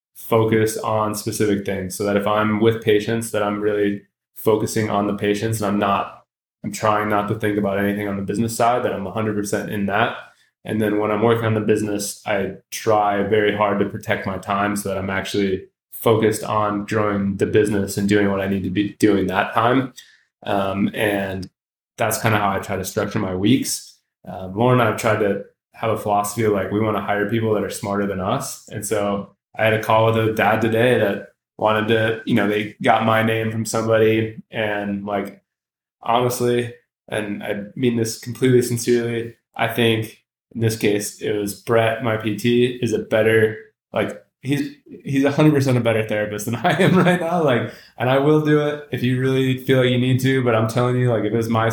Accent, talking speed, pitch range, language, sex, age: American, 210 wpm, 105-115 Hz, English, male, 20-39